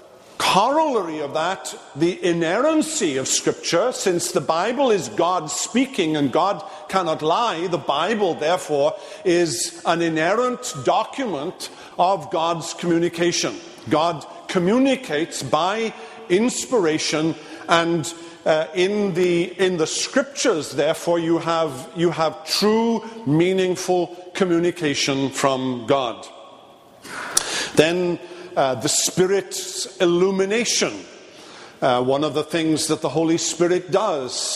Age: 50-69